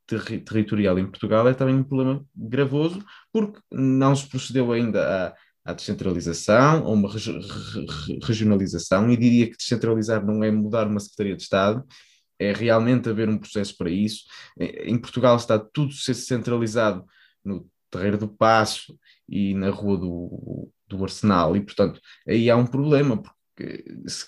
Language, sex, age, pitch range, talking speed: Portuguese, male, 20-39, 105-140 Hz, 160 wpm